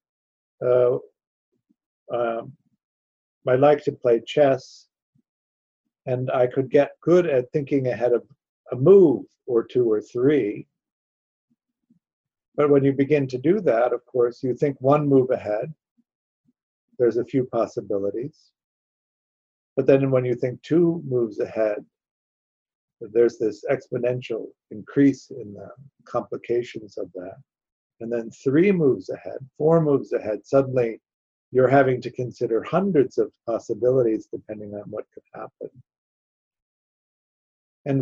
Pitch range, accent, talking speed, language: 115-145 Hz, American, 125 wpm, English